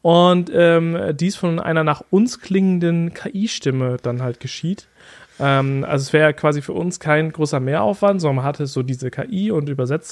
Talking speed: 185 wpm